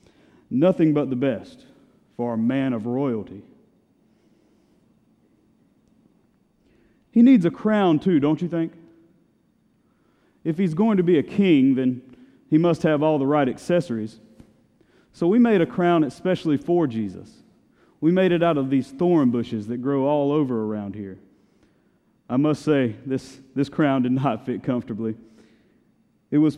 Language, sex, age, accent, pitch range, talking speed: English, male, 30-49, American, 120-160 Hz, 150 wpm